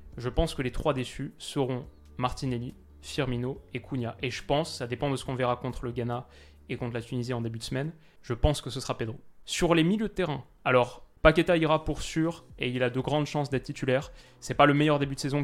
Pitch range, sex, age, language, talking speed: 120-140 Hz, male, 20-39, French, 240 wpm